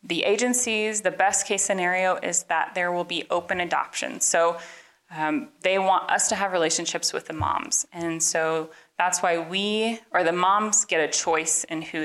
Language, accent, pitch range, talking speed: English, American, 155-195 Hz, 185 wpm